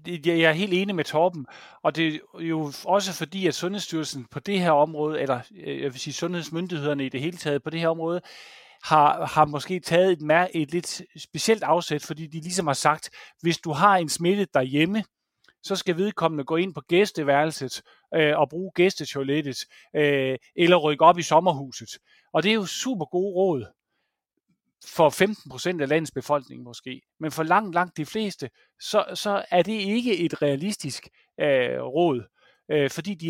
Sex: male